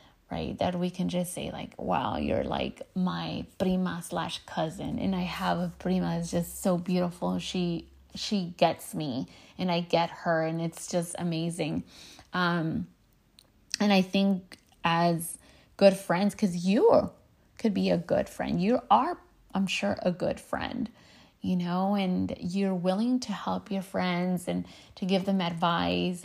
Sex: female